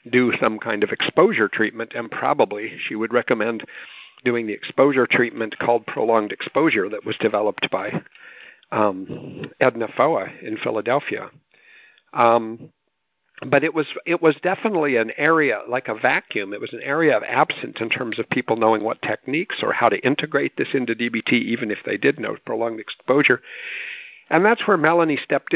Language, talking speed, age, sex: English, 165 wpm, 50-69, male